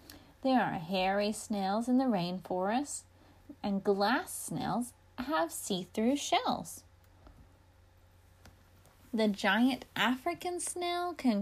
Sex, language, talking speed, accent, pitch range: female, English, 95 wpm, American, 175-285 Hz